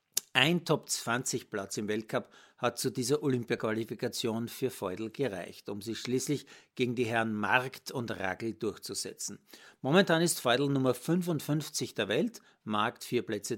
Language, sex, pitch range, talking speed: German, male, 115-150 Hz, 145 wpm